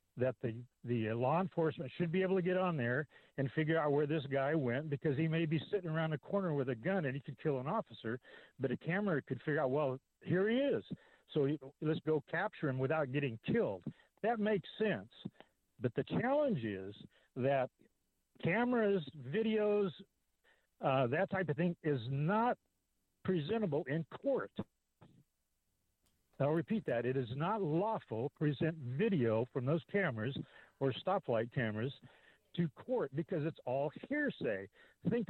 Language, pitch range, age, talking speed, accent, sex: English, 130-180 Hz, 60-79, 165 wpm, American, male